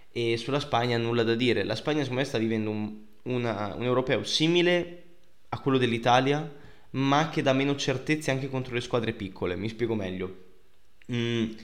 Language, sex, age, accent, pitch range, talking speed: Italian, male, 20-39, native, 115-140 Hz, 175 wpm